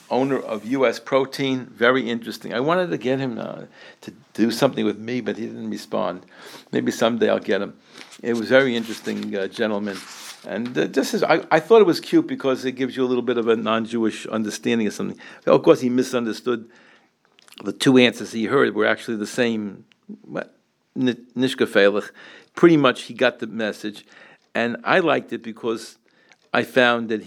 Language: English